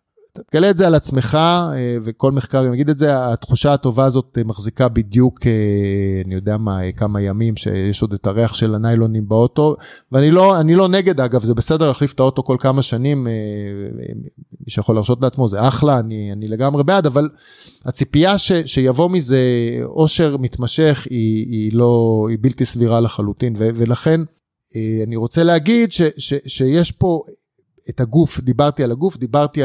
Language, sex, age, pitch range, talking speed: Hebrew, male, 30-49, 115-150 Hz, 160 wpm